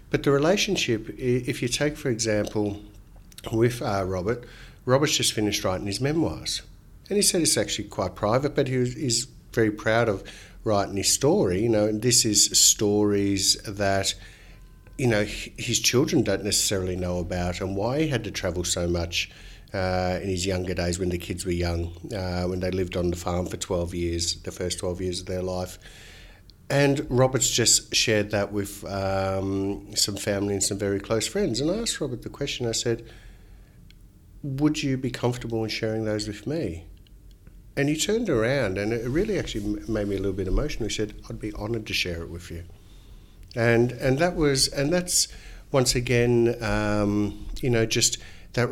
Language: English